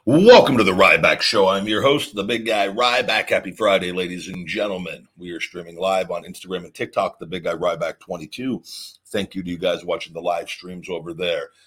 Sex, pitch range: male, 95-120 Hz